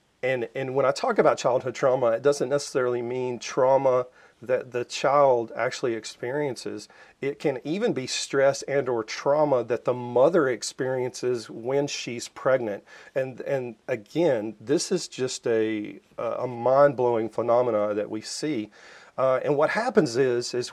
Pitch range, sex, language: 115-130 Hz, male, English